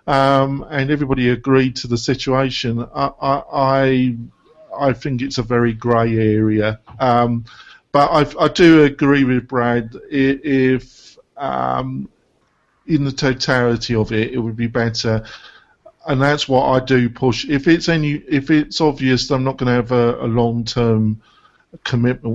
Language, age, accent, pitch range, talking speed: English, 50-69, British, 115-140 Hz, 160 wpm